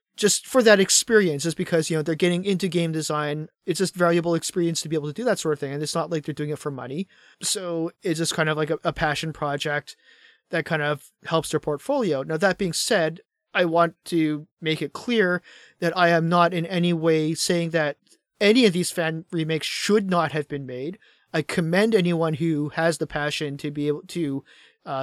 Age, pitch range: 30-49, 155-180 Hz